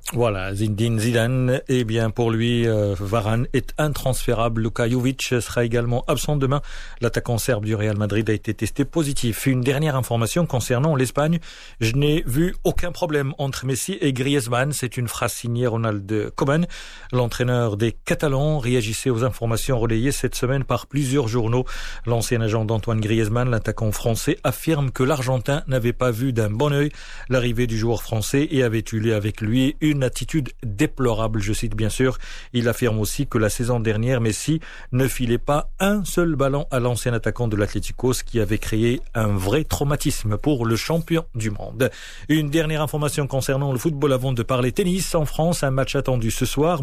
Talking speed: 180 wpm